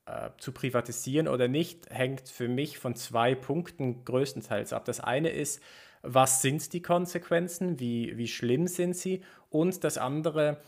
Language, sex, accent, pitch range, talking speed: German, male, German, 115-140 Hz, 150 wpm